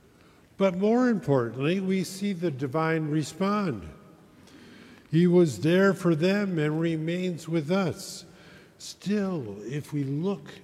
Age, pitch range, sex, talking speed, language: 50-69, 140-180 Hz, male, 120 wpm, English